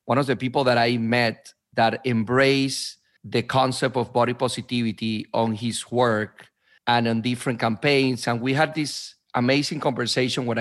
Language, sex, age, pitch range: English, male, 40-59, 115-135 Hz